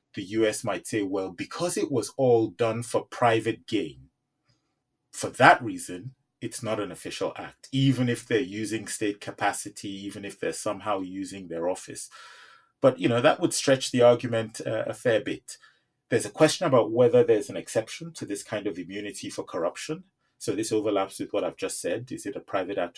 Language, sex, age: English, male, 30-49